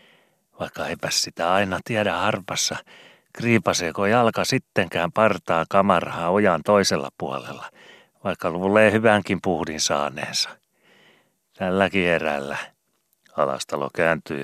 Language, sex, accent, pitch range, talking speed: Finnish, male, native, 75-90 Hz, 95 wpm